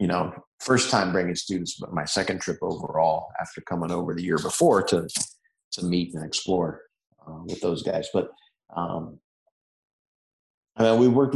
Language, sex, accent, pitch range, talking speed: English, male, American, 85-105 Hz, 170 wpm